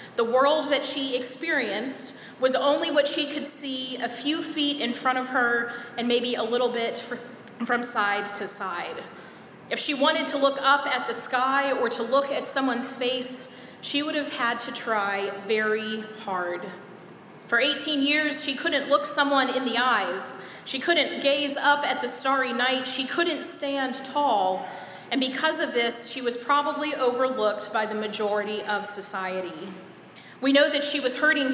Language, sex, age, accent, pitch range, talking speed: English, female, 30-49, American, 220-280 Hz, 175 wpm